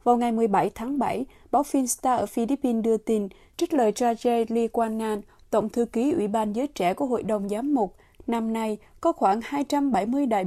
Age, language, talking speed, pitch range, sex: 20-39, Vietnamese, 200 wpm, 205-260 Hz, female